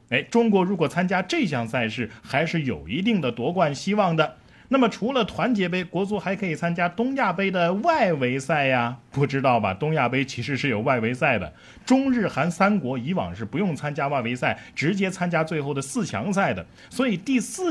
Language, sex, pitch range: Chinese, male, 130-195 Hz